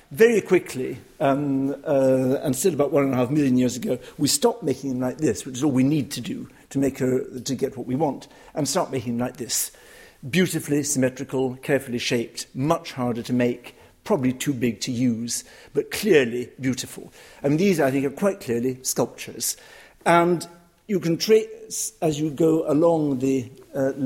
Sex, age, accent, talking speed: male, 60-79, British, 185 wpm